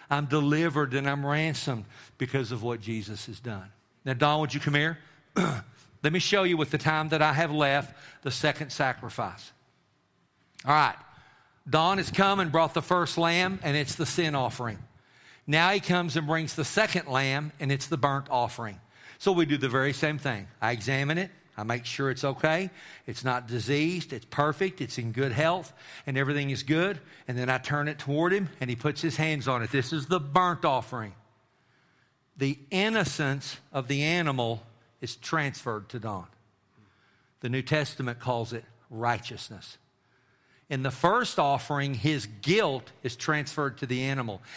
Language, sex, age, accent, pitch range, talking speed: English, male, 50-69, American, 125-155 Hz, 180 wpm